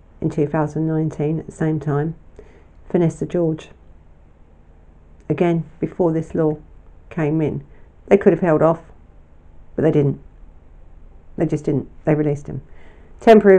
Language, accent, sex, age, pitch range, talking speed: English, British, female, 50-69, 150-195 Hz, 135 wpm